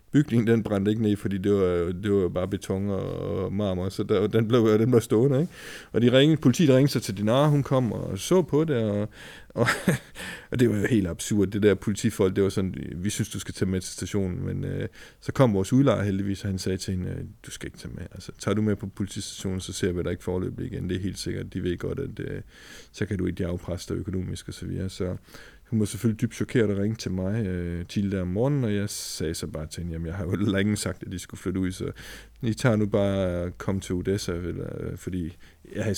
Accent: native